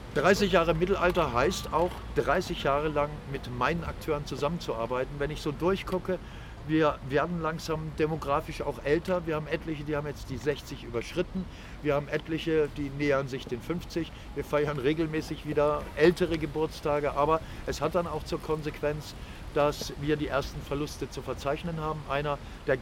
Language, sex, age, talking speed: German, male, 50-69, 165 wpm